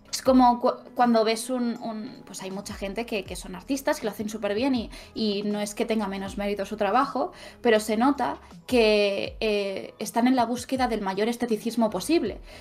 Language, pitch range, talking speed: Spanish, 205-250 Hz, 205 wpm